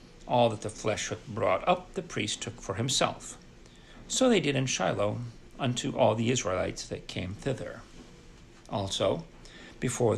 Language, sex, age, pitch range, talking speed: English, male, 60-79, 110-135 Hz, 155 wpm